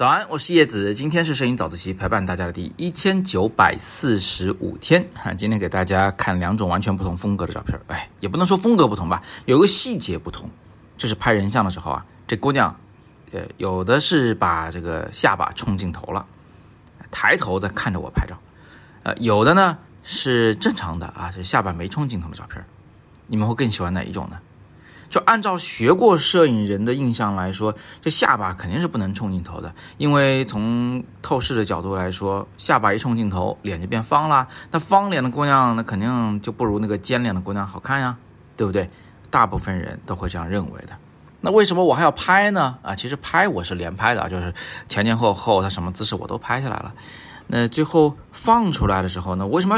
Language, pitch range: Chinese, 95-135 Hz